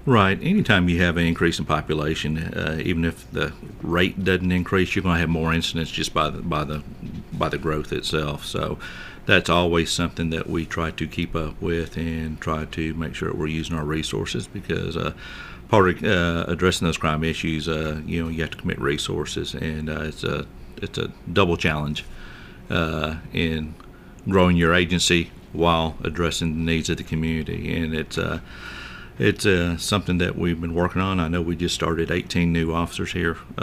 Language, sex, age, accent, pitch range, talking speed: English, male, 50-69, American, 80-85 Hz, 195 wpm